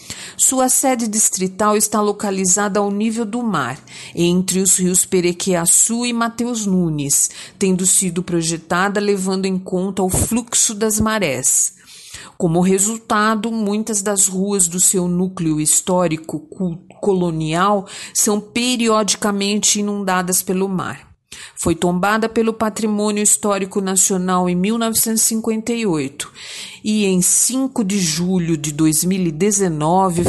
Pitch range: 185-220 Hz